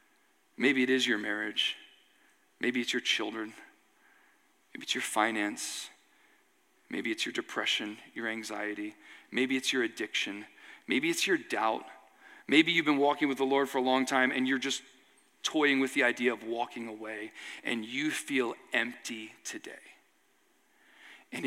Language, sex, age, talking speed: English, male, 40-59, 150 wpm